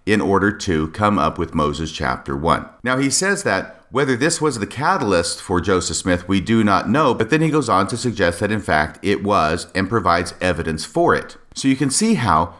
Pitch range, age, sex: 85-115 Hz, 40-59, male